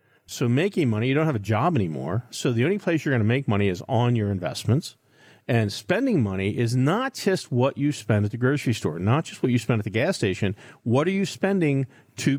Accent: American